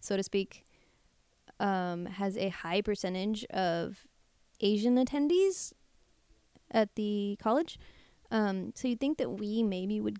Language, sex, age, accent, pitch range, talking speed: English, female, 20-39, American, 185-225 Hz, 130 wpm